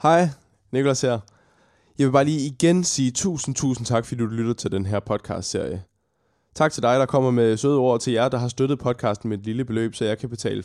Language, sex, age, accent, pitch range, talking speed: Danish, male, 20-39, native, 110-135 Hz, 230 wpm